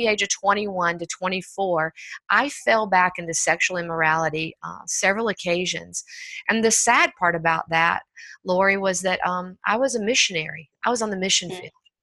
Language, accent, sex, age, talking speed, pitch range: English, American, female, 50-69, 170 wpm, 170-200 Hz